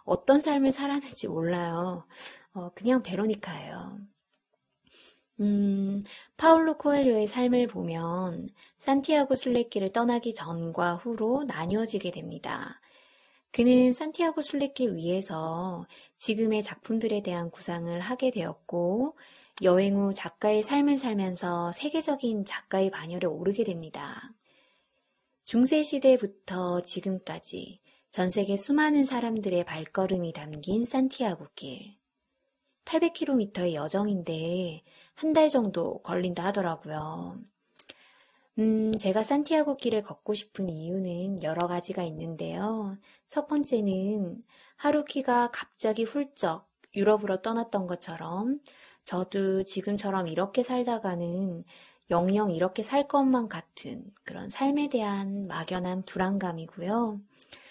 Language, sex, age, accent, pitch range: Korean, female, 20-39, native, 180-255 Hz